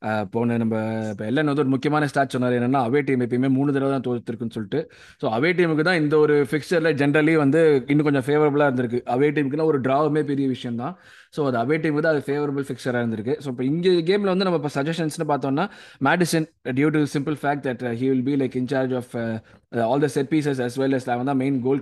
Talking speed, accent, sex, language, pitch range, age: 170 wpm, native, male, Tamil, 130-155 Hz, 20-39